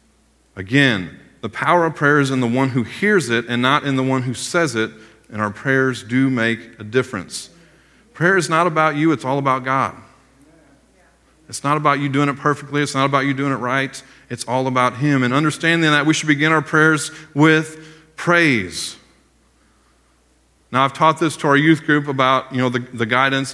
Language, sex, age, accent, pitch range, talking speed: English, male, 40-59, American, 125-155 Hz, 195 wpm